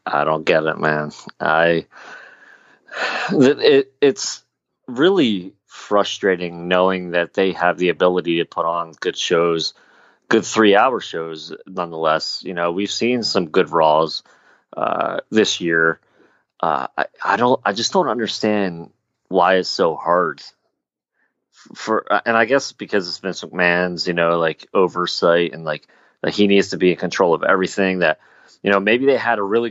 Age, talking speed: 30-49, 160 wpm